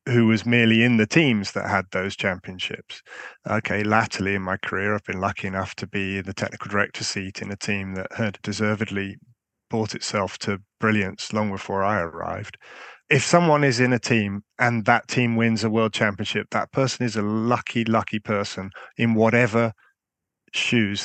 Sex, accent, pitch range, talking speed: male, British, 100-115 Hz, 175 wpm